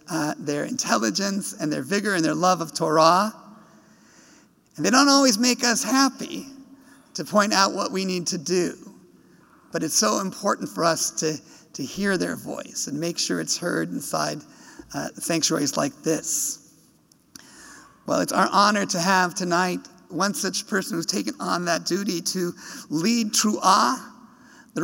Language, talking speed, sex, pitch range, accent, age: English, 160 wpm, male, 165-205 Hz, American, 50-69